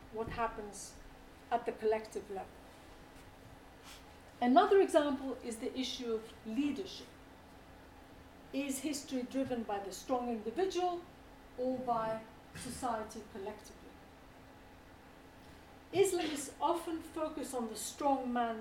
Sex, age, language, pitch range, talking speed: female, 50-69, English, 220-285 Hz, 100 wpm